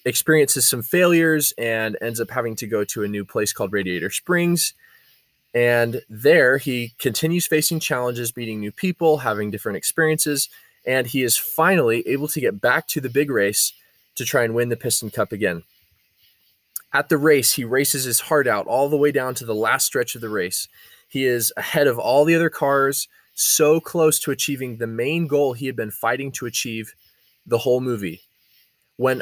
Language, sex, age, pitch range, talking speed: English, male, 20-39, 110-145 Hz, 190 wpm